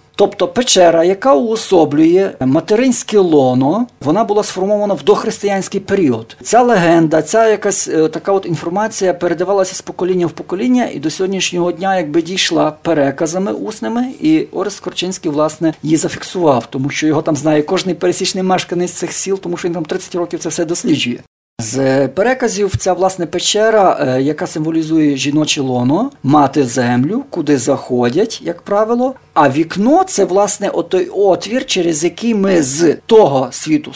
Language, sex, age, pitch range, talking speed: Ukrainian, male, 50-69, 145-195 Hz, 150 wpm